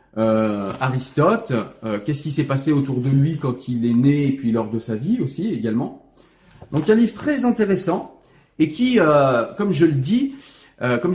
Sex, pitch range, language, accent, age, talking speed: male, 120-175 Hz, French, French, 40-59, 200 wpm